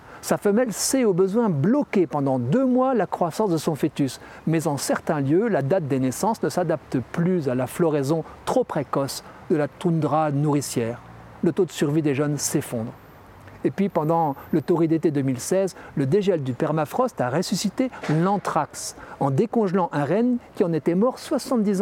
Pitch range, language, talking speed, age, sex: 140-195 Hz, French, 175 wpm, 60-79, male